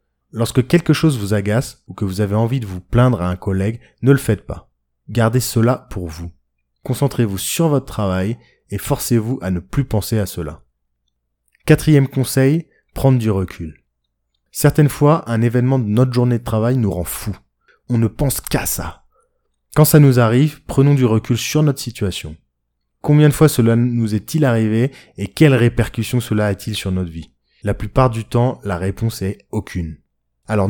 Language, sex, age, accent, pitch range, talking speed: French, male, 20-39, French, 95-130 Hz, 185 wpm